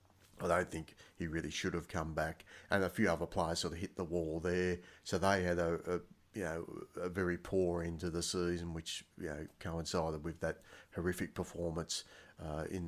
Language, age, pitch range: English, 40-59, 90-105 Hz